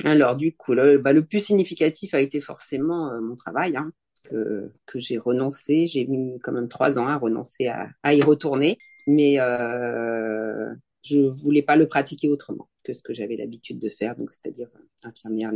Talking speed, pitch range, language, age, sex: 195 wpm, 120-150 Hz, French, 40-59, female